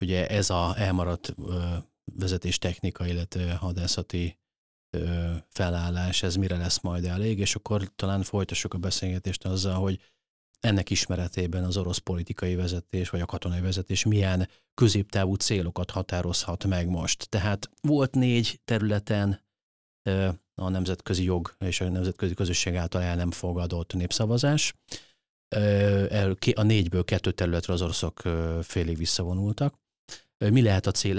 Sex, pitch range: male, 85-100 Hz